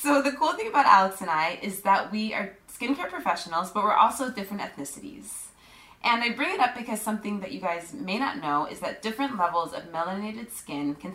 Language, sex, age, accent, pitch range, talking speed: English, female, 20-39, American, 190-250 Hz, 215 wpm